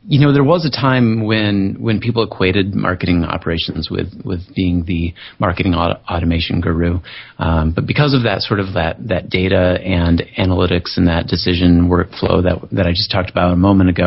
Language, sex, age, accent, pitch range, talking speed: English, male, 30-49, American, 90-110 Hz, 190 wpm